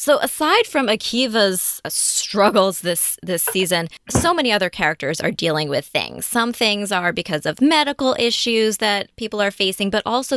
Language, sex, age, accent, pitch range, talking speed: English, female, 20-39, American, 175-225 Hz, 170 wpm